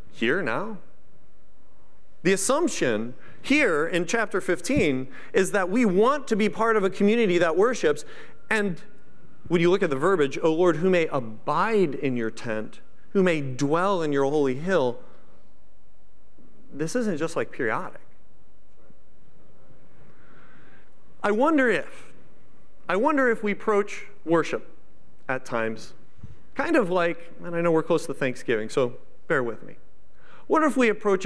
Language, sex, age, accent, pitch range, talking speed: English, male, 40-59, American, 155-210 Hz, 145 wpm